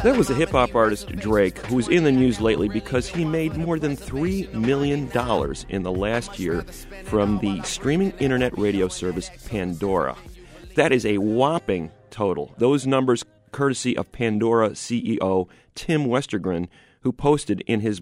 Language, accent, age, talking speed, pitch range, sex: English, American, 40-59, 155 wpm, 100-140 Hz, male